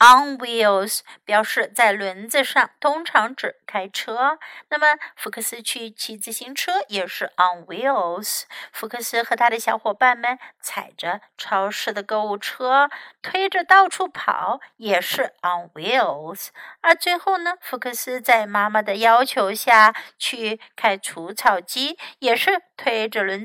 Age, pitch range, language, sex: 50-69, 210-280 Hz, Chinese, female